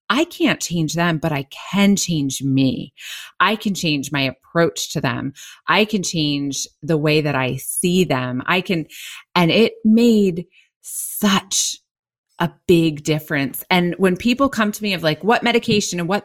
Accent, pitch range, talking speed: American, 155-210 Hz, 170 wpm